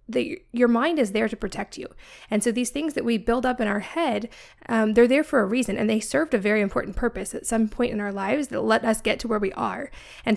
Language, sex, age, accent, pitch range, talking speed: English, female, 20-39, American, 210-250 Hz, 270 wpm